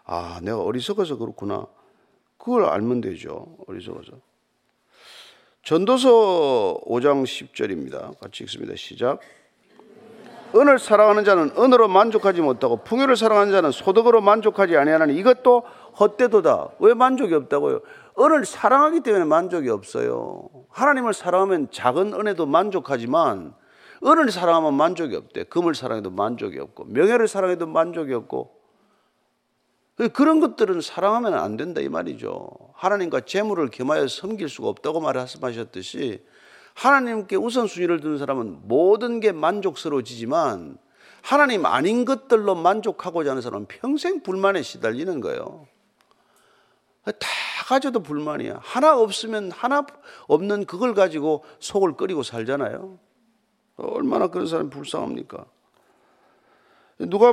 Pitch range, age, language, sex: 175-270 Hz, 40-59, Korean, male